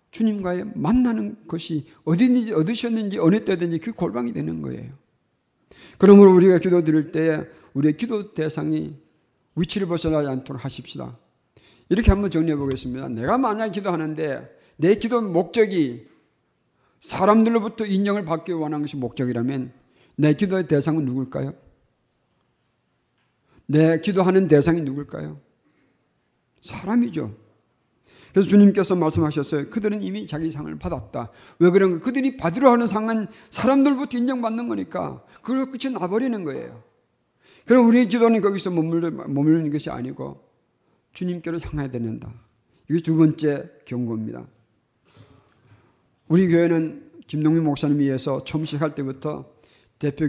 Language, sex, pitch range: Korean, male, 135-200 Hz